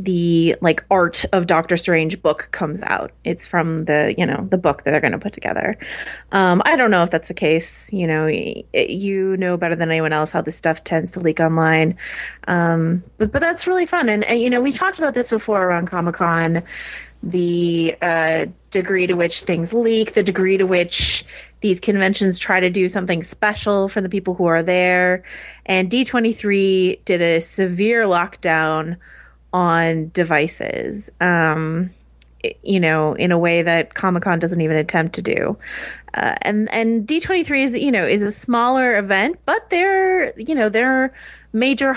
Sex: female